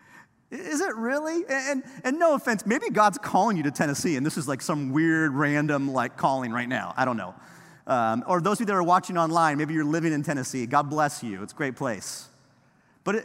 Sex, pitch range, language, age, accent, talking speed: male, 150-220 Hz, English, 30-49, American, 225 wpm